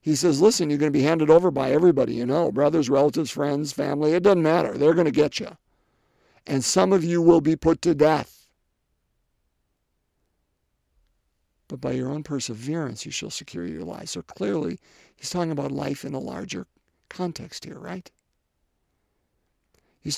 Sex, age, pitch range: male, 50-69, 135-165 Hz